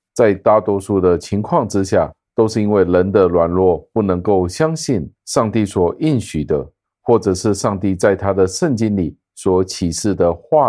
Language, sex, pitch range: Chinese, male, 90-110 Hz